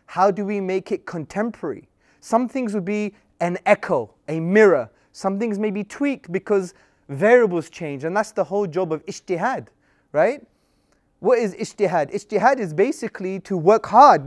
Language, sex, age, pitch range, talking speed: English, male, 30-49, 165-225 Hz, 165 wpm